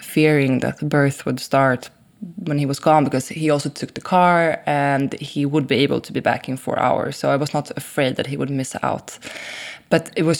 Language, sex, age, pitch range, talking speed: English, female, 20-39, 140-165 Hz, 230 wpm